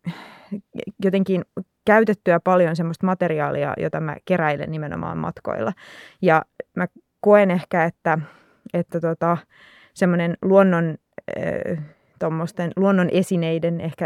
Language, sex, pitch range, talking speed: Finnish, female, 160-185 Hz, 100 wpm